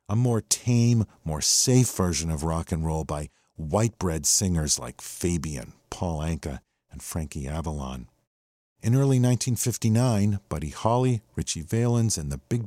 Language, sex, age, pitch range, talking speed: English, male, 50-69, 80-120 Hz, 140 wpm